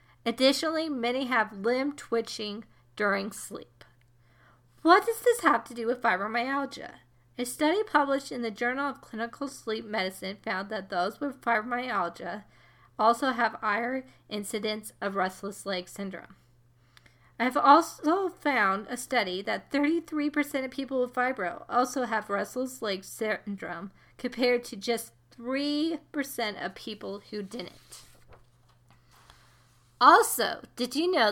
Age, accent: 40-59, American